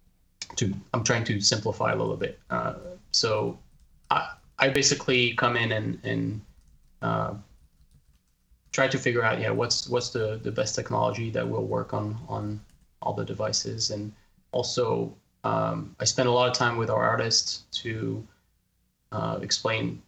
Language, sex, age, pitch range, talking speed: English, male, 20-39, 100-125 Hz, 155 wpm